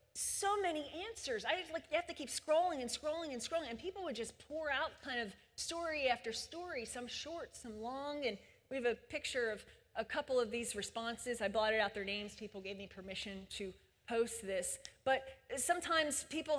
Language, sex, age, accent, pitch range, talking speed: English, female, 30-49, American, 225-290 Hz, 200 wpm